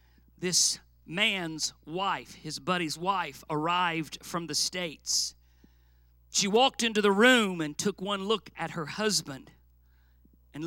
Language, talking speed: English, 130 wpm